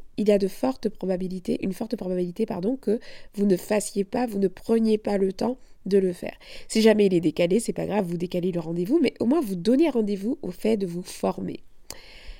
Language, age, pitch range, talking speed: French, 20-39, 190-255 Hz, 230 wpm